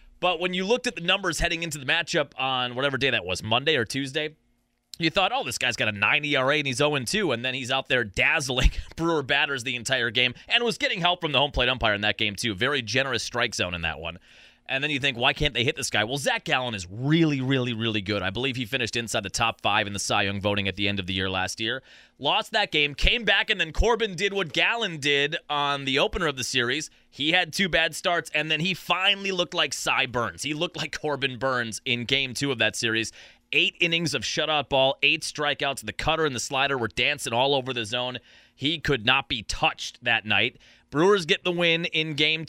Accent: American